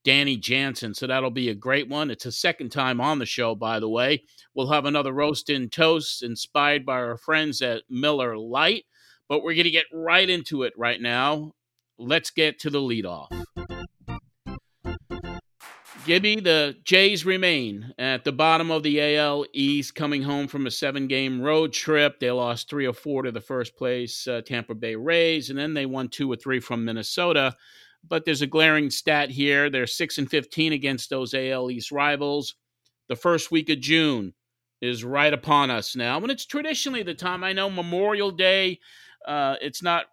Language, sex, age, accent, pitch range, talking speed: English, male, 50-69, American, 125-160 Hz, 185 wpm